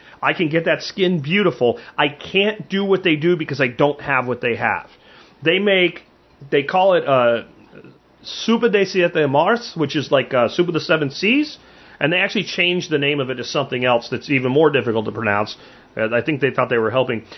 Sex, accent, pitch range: male, American, 140-205 Hz